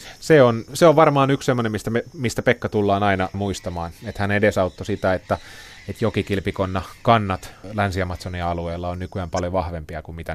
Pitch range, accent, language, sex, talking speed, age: 90-110 Hz, native, Finnish, male, 170 wpm, 30-49